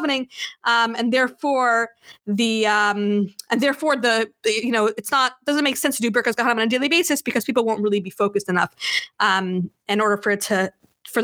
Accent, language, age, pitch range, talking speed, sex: American, English, 20-39, 205-255 Hz, 205 wpm, female